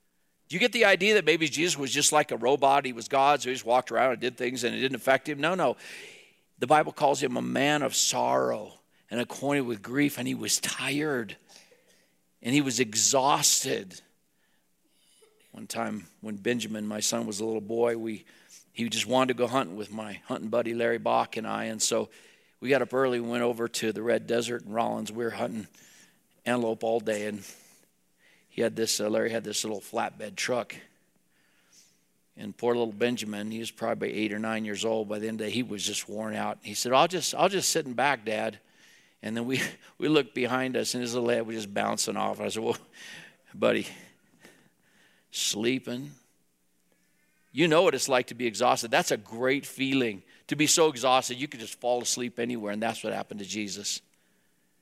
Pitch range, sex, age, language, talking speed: 105-130 Hz, male, 50-69, English, 205 wpm